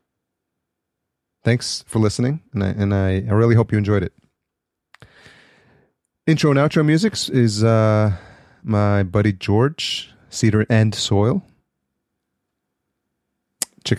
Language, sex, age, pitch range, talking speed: English, male, 30-49, 100-120 Hz, 110 wpm